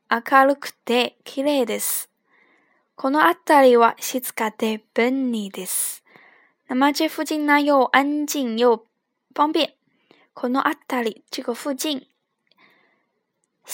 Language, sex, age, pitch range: Chinese, female, 10-29, 230-285 Hz